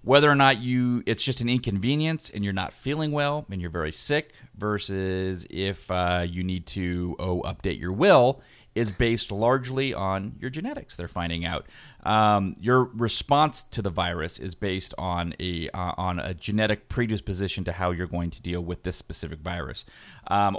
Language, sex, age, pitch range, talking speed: English, male, 30-49, 95-125 Hz, 180 wpm